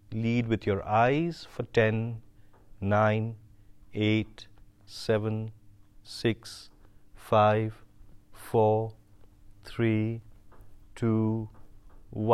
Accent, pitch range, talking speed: Indian, 100-110 Hz, 70 wpm